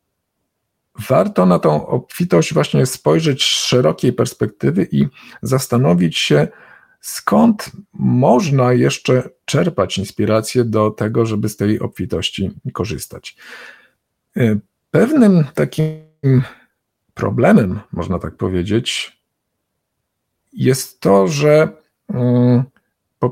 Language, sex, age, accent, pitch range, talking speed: Polish, male, 50-69, native, 105-130 Hz, 85 wpm